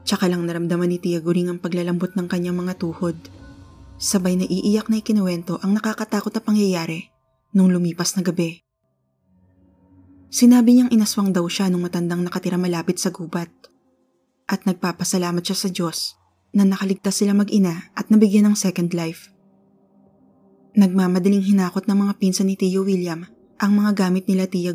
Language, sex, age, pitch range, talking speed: Filipino, female, 20-39, 175-200 Hz, 155 wpm